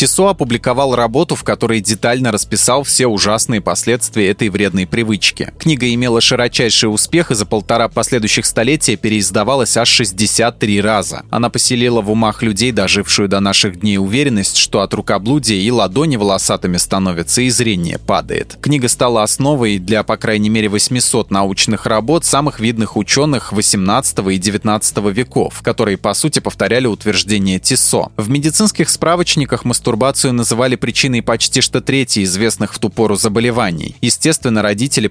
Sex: male